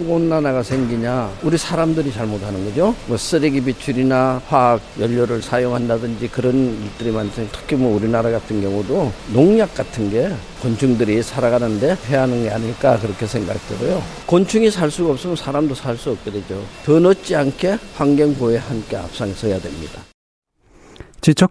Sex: male